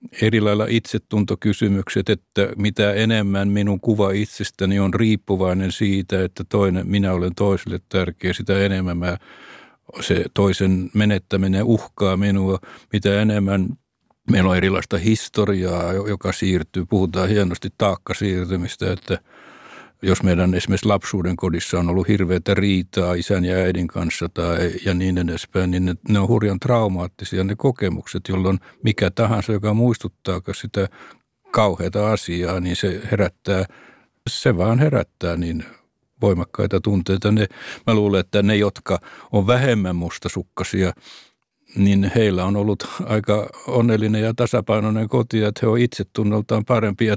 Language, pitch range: Finnish, 95-105 Hz